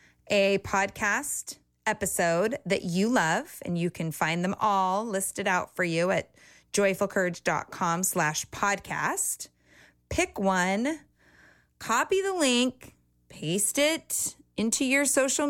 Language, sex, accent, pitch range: English, female, American, 175-240 Hz